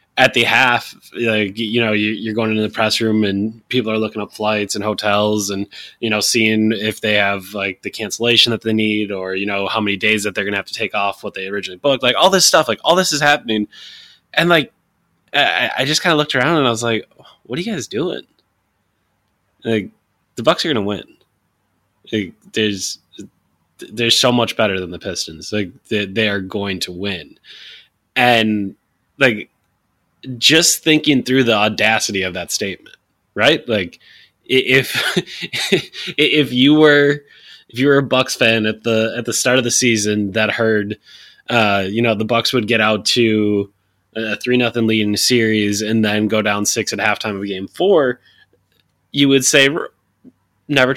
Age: 20-39